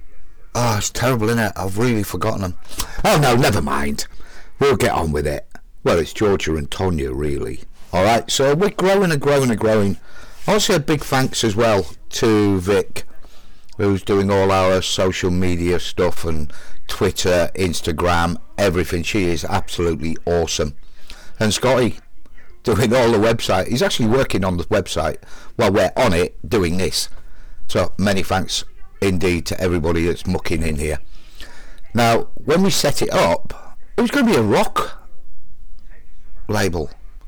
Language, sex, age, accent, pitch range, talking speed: English, male, 50-69, British, 85-115 Hz, 160 wpm